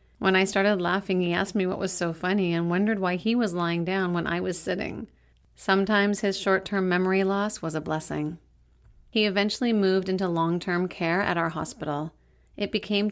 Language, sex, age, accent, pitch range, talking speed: English, female, 40-59, American, 170-195 Hz, 190 wpm